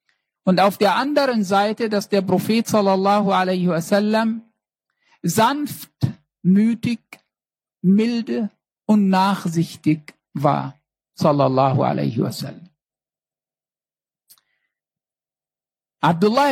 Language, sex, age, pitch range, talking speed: German, male, 60-79, 175-230 Hz, 70 wpm